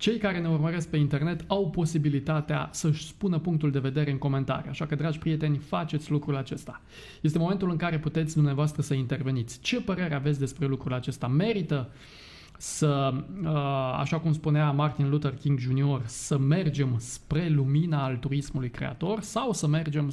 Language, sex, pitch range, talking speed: Romanian, male, 140-170 Hz, 160 wpm